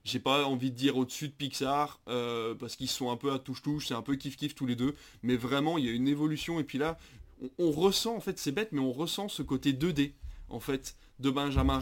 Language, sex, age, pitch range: French, male, 20-39, 125-150 Hz